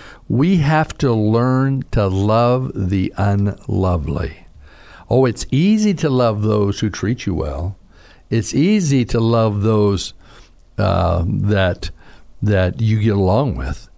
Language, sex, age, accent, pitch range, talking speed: English, male, 60-79, American, 90-115 Hz, 130 wpm